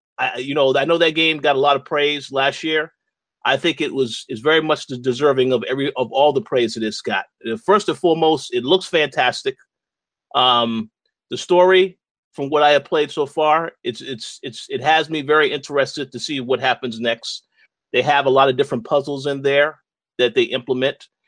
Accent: American